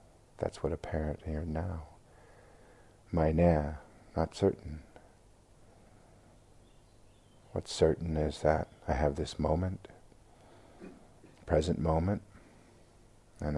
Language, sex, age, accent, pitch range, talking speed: English, male, 50-69, American, 75-105 Hz, 95 wpm